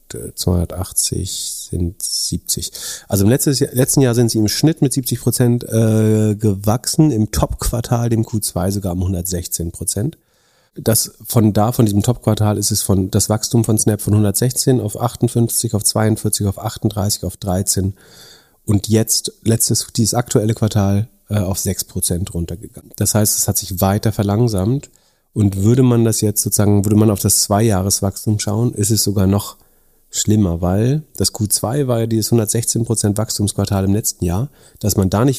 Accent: German